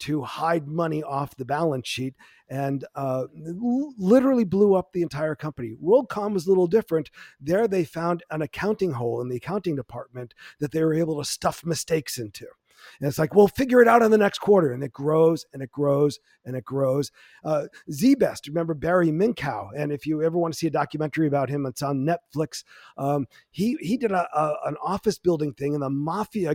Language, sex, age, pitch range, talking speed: English, male, 40-59, 140-185 Hz, 200 wpm